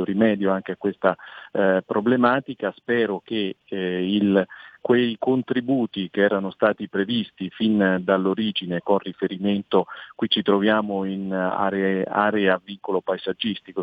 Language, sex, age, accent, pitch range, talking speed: Italian, male, 40-59, native, 95-110 Hz, 120 wpm